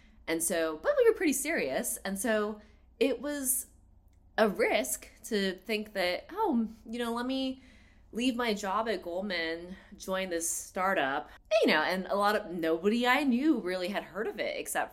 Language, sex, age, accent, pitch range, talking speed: English, female, 20-39, American, 150-215 Hz, 175 wpm